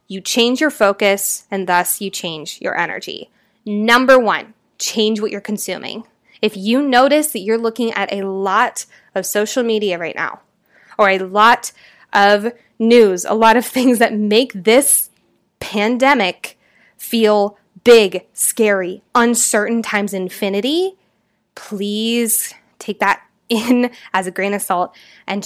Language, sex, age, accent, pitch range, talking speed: English, female, 20-39, American, 200-240 Hz, 140 wpm